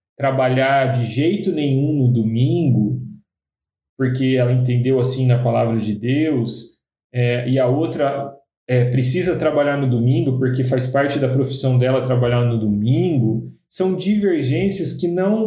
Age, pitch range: 40-59, 120-150 Hz